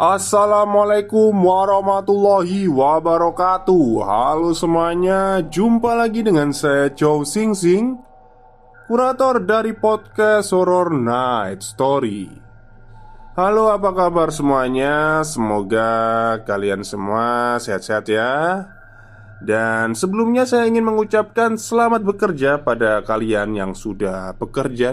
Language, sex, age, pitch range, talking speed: Indonesian, male, 20-39, 110-170 Hz, 95 wpm